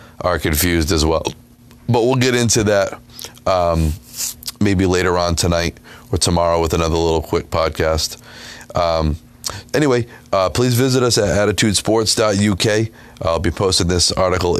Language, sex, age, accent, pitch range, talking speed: English, male, 30-49, American, 90-105 Hz, 150 wpm